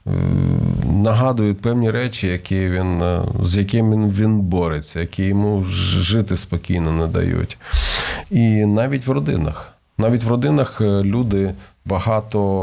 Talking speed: 115 wpm